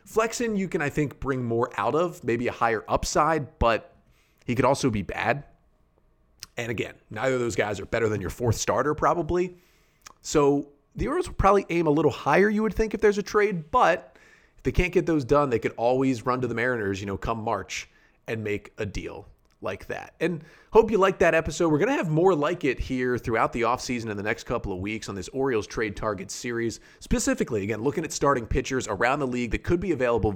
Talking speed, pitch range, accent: 225 wpm, 115-160 Hz, American